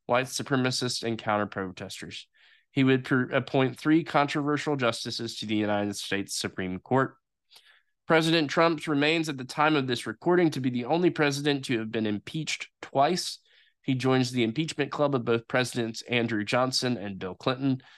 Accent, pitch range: American, 110-145 Hz